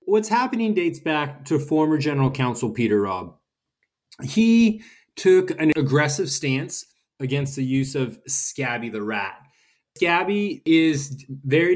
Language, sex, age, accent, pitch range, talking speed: English, male, 20-39, American, 135-155 Hz, 130 wpm